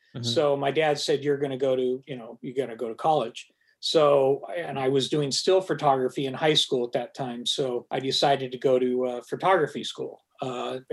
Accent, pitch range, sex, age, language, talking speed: American, 130-150 Hz, male, 40-59, English, 215 wpm